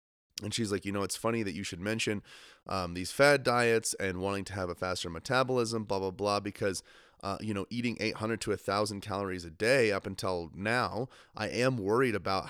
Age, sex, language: 30-49, male, English